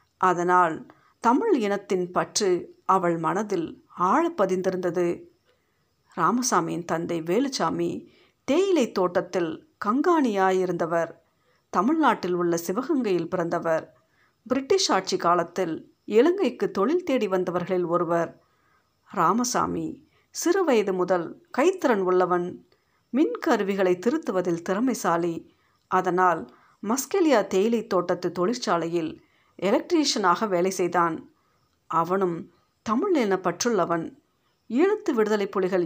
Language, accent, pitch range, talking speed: Tamil, native, 175-255 Hz, 80 wpm